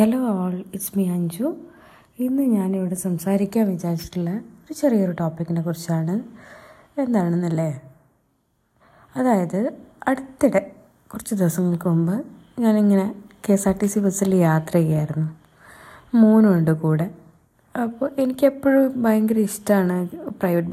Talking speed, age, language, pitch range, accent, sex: 100 wpm, 20-39, Malayalam, 170-220 Hz, native, female